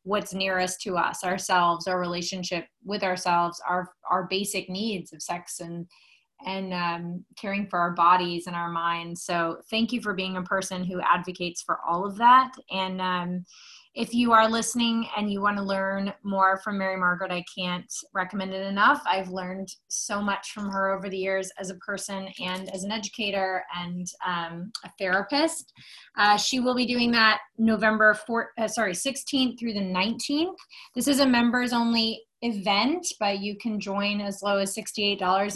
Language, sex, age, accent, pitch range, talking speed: English, female, 20-39, American, 185-230 Hz, 180 wpm